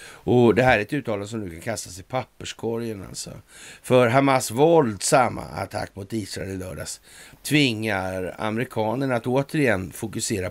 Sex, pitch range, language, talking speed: male, 100-130 Hz, Swedish, 150 wpm